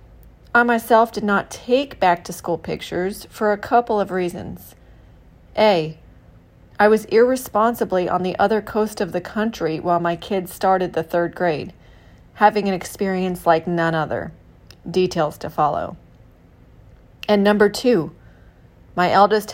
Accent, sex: American, female